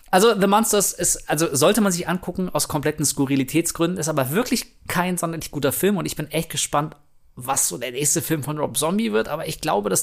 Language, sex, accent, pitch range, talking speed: German, male, German, 125-160 Hz, 220 wpm